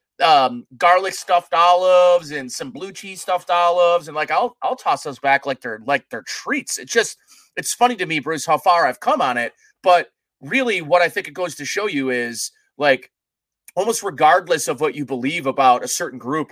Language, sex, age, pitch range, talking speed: English, male, 30-49, 145-210 Hz, 205 wpm